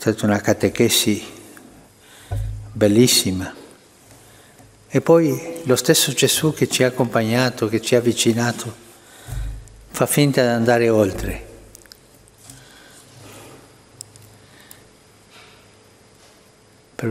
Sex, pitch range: male, 110-130 Hz